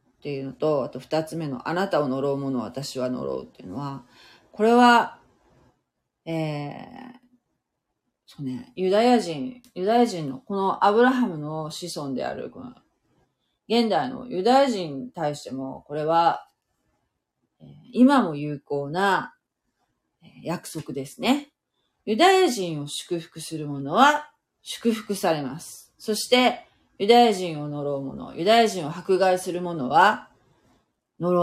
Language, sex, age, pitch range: Japanese, female, 30-49, 150-250 Hz